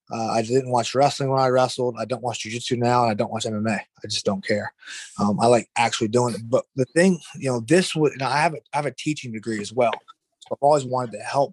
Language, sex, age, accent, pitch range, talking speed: English, male, 20-39, American, 120-145 Hz, 275 wpm